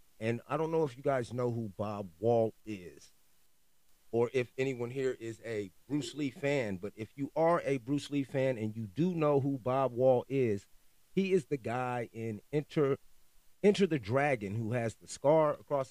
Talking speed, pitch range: 190 wpm, 105-135 Hz